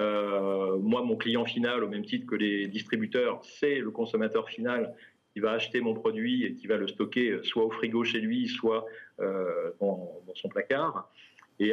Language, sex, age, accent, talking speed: French, male, 40-59, French, 190 wpm